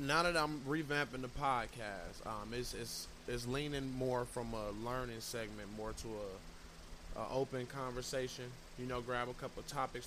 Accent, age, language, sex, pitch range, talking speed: American, 20-39, English, male, 110-125 Hz, 165 wpm